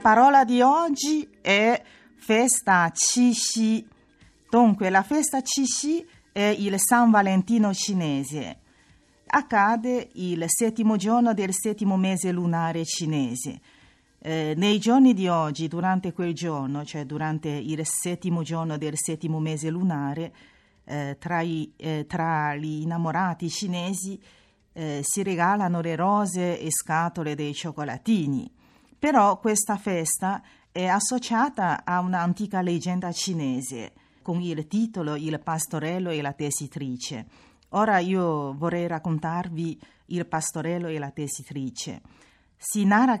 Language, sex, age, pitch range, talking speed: Italian, female, 40-59, 155-200 Hz, 120 wpm